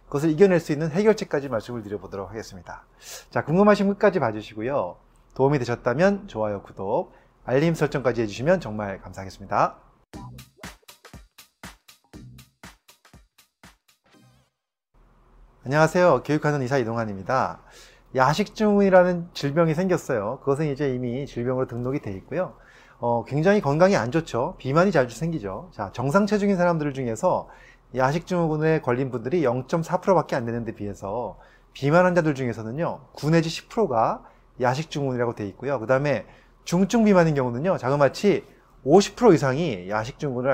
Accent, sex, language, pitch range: native, male, Korean, 120-180 Hz